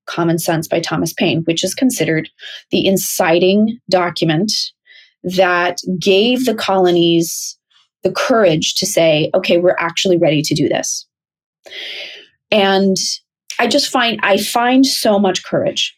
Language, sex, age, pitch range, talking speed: English, female, 30-49, 185-240 Hz, 130 wpm